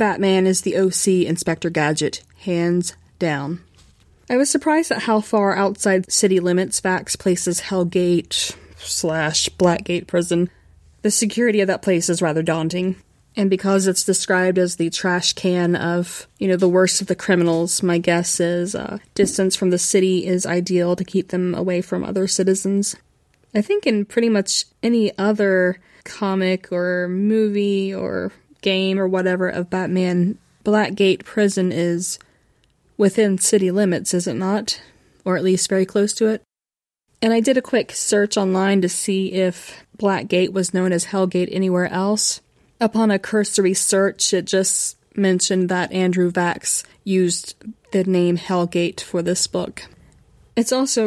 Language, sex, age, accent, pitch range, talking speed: English, female, 20-39, American, 180-200 Hz, 155 wpm